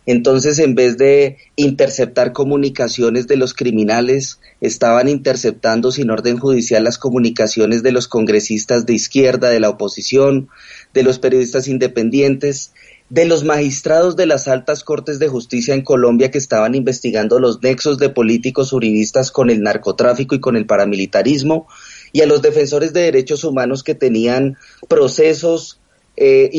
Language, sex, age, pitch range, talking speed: Spanish, male, 30-49, 120-150 Hz, 145 wpm